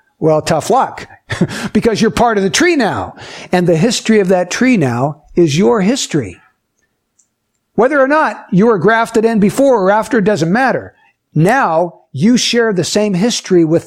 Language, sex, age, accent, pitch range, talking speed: English, male, 60-79, American, 155-215 Hz, 175 wpm